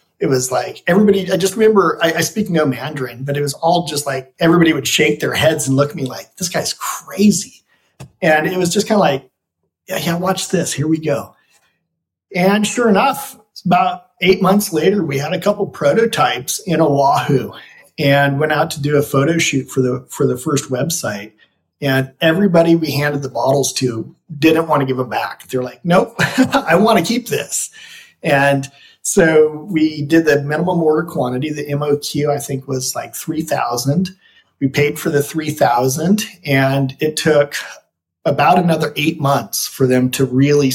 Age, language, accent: 40-59, English, American